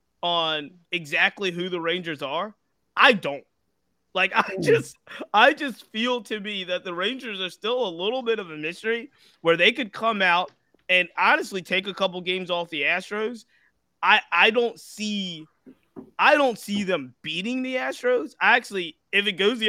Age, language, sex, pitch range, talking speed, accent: 20-39, English, male, 150-205 Hz, 175 wpm, American